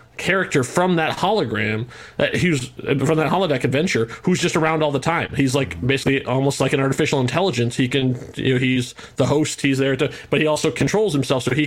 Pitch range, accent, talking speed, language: 130-150 Hz, American, 215 wpm, English